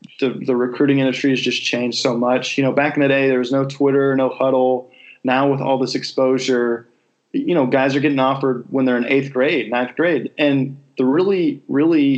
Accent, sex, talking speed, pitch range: American, male, 210 wpm, 125-140 Hz